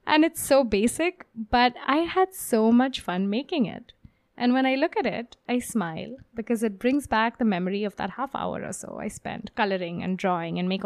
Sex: female